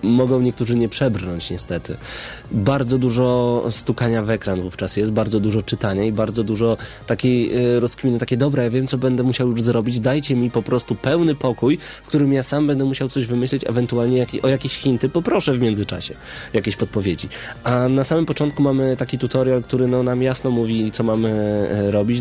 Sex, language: male, Polish